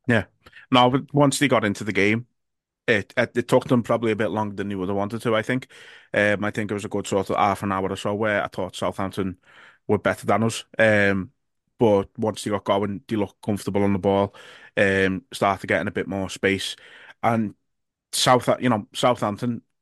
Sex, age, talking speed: male, 20-39, 215 wpm